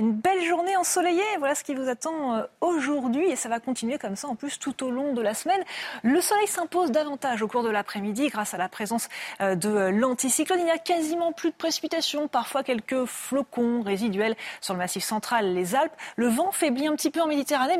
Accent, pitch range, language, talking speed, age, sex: French, 220-315 Hz, French, 210 wpm, 30-49, female